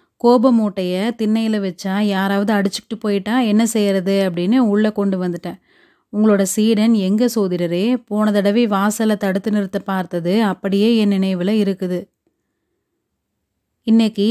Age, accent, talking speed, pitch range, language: 30-49, native, 115 wpm, 195-225 Hz, Tamil